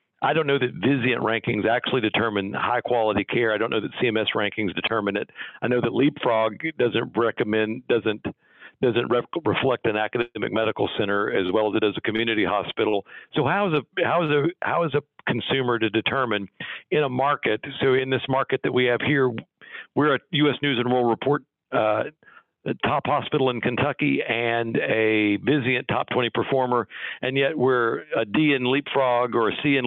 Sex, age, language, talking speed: male, 50-69, English, 185 wpm